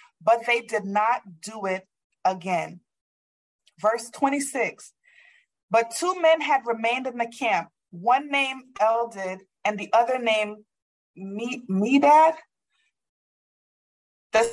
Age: 30-49